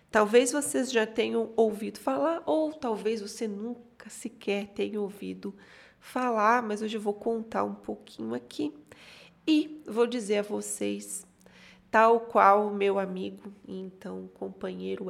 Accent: Brazilian